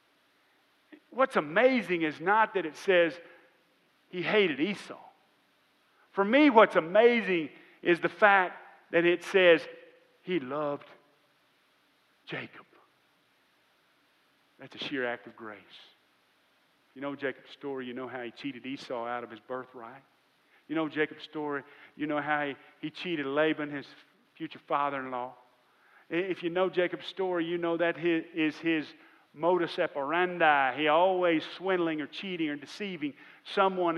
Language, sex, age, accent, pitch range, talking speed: English, male, 50-69, American, 140-180 Hz, 135 wpm